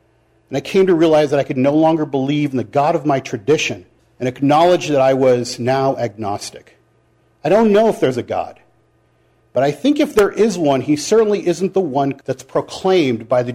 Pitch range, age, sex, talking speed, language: 130-195 Hz, 50-69, male, 210 wpm, English